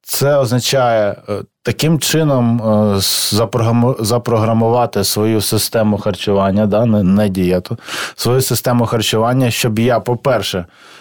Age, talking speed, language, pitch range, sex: 20-39, 105 wpm, Ukrainian, 100-120 Hz, male